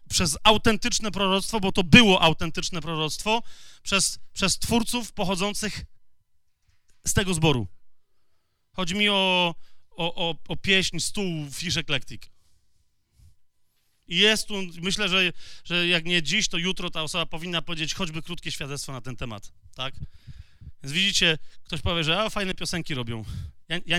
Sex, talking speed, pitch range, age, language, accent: male, 145 wpm, 155-205 Hz, 30-49, Polish, native